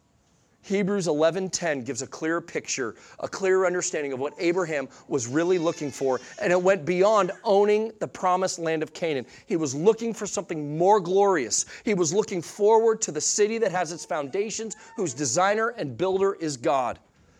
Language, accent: English, American